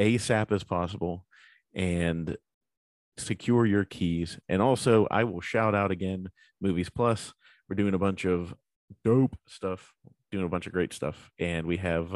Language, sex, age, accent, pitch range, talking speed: English, male, 30-49, American, 90-110 Hz, 160 wpm